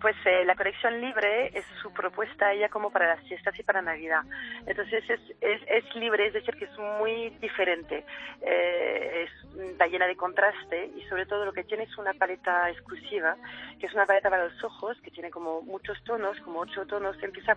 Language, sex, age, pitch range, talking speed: Spanish, female, 30-49, 180-225 Hz, 200 wpm